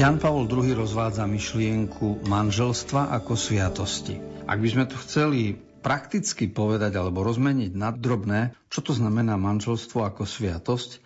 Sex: male